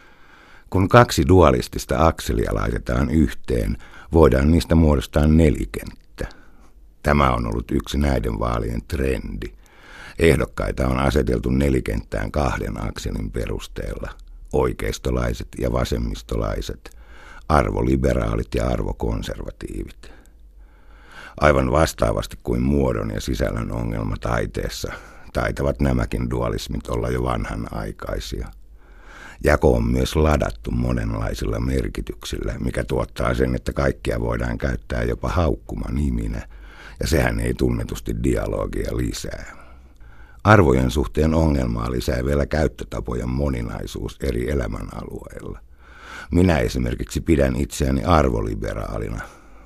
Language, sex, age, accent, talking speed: Finnish, male, 60-79, native, 95 wpm